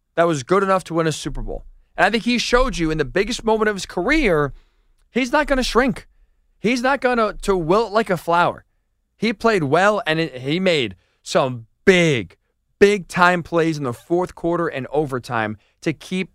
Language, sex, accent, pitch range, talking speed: English, male, American, 150-215 Hz, 200 wpm